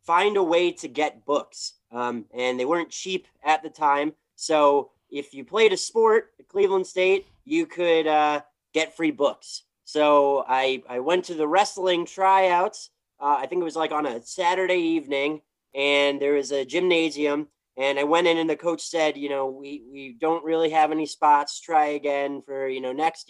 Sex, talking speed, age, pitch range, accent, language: male, 195 wpm, 30-49, 145-190 Hz, American, English